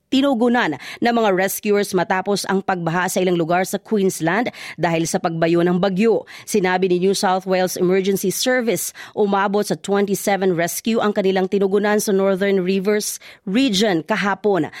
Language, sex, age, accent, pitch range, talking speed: Filipino, female, 40-59, native, 190-225 Hz, 145 wpm